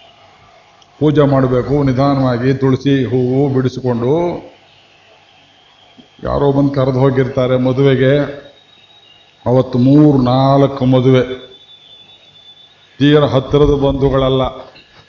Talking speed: 70 wpm